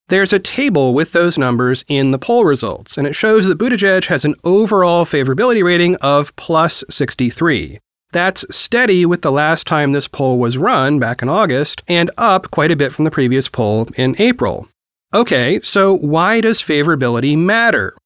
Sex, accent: male, American